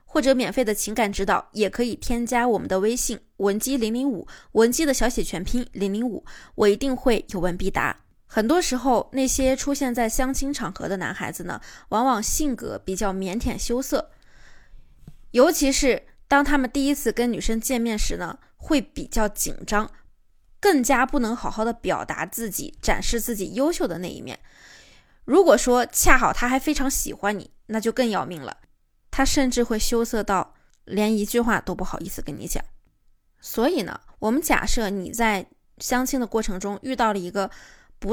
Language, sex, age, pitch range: Chinese, female, 20-39, 215-270 Hz